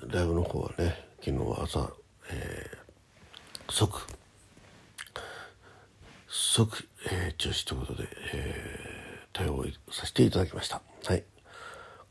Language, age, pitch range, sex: Japanese, 60-79, 85-105 Hz, male